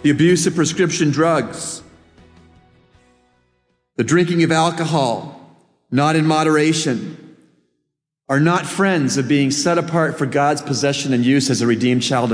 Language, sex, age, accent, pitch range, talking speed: English, male, 40-59, American, 145-180 Hz, 135 wpm